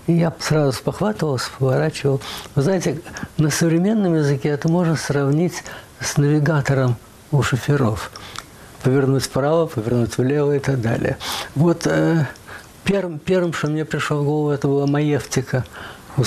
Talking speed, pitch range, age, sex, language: 135 wpm, 135-170 Hz, 60-79, male, Russian